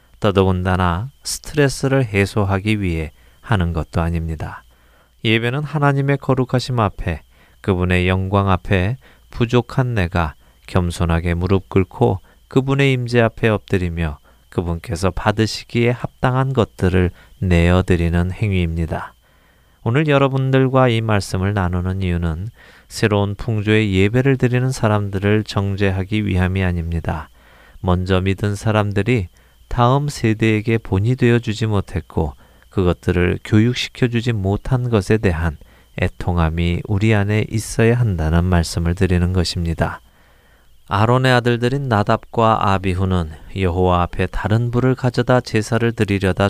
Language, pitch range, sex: Korean, 90-115 Hz, male